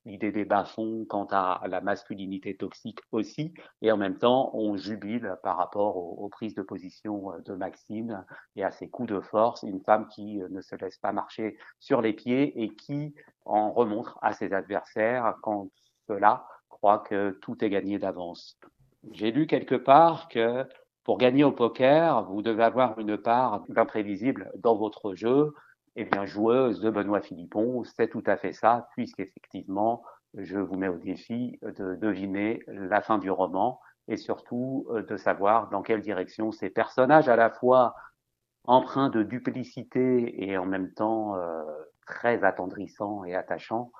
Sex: male